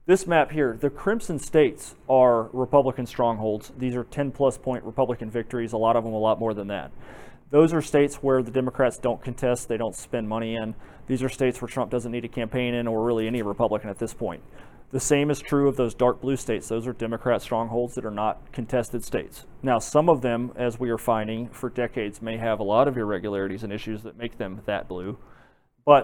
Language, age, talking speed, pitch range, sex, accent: English, 30-49, 225 wpm, 115-130 Hz, male, American